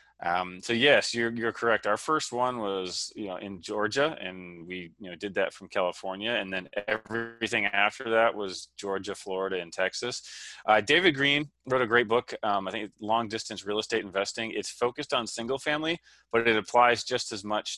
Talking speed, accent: 195 wpm, American